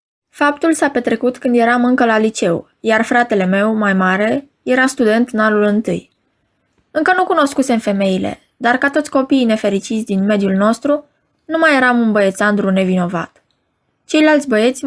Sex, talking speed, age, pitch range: female, 155 wpm, 20-39, 205-265 Hz